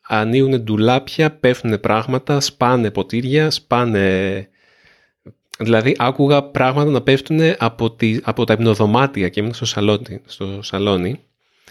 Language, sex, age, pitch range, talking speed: Greek, male, 30-49, 100-145 Hz, 115 wpm